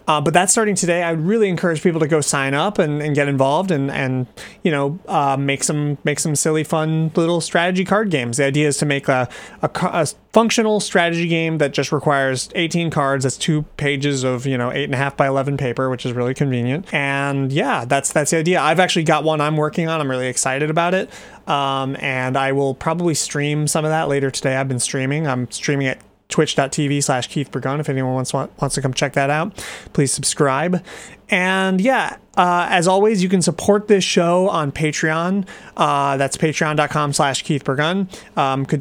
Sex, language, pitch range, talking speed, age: male, English, 140-170 Hz, 210 wpm, 30-49